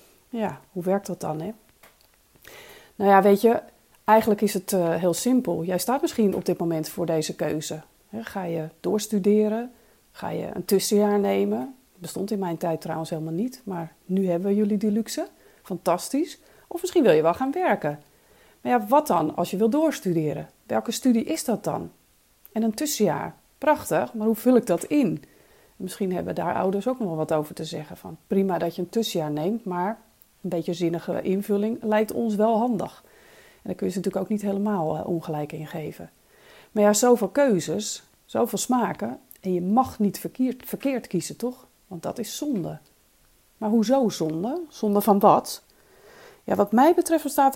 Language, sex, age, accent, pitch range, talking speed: Dutch, female, 40-59, Dutch, 175-235 Hz, 185 wpm